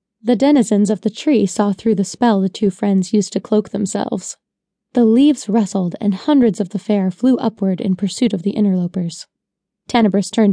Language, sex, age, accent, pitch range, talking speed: English, female, 20-39, American, 200-240 Hz, 190 wpm